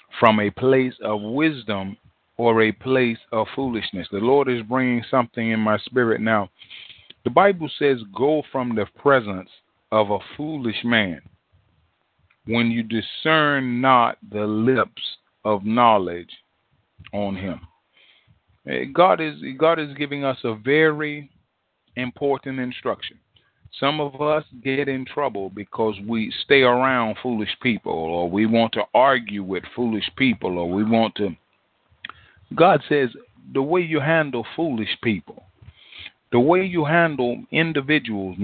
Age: 30-49